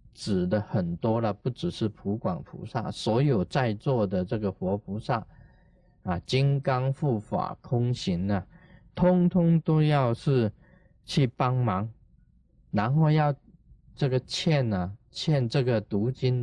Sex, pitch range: male, 100-135 Hz